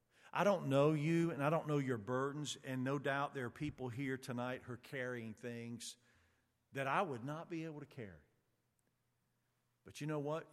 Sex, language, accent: male, English, American